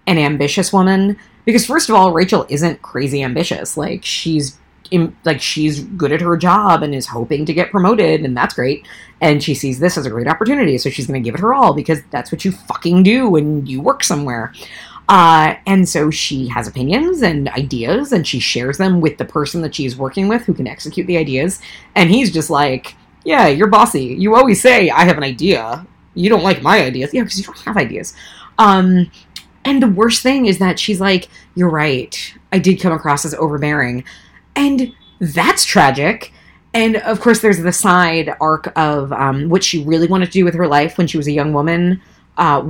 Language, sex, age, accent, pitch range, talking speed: English, female, 20-39, American, 145-195 Hz, 205 wpm